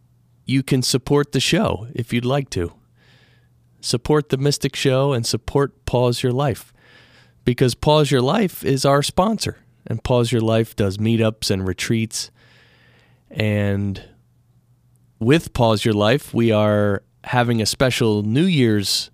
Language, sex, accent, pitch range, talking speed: English, male, American, 110-135 Hz, 140 wpm